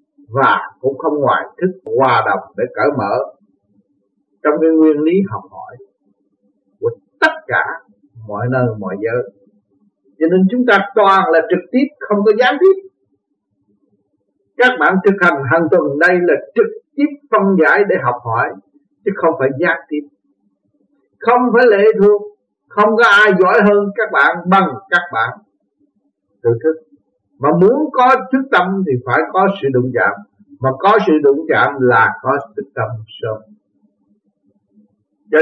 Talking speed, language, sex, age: 160 wpm, Vietnamese, male, 50-69